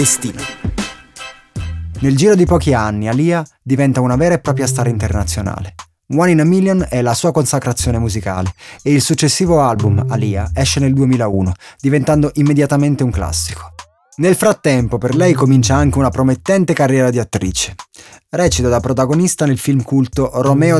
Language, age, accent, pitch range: Italian, 20-39, native, 115-145 Hz